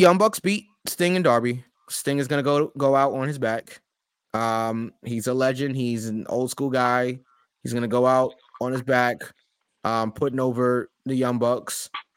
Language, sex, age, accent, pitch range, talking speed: English, male, 20-39, American, 110-130 Hz, 180 wpm